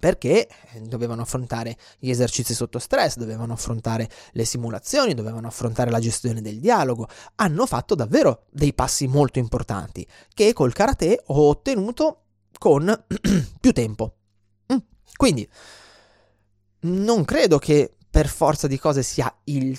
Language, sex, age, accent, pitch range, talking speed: Italian, male, 20-39, native, 110-145 Hz, 130 wpm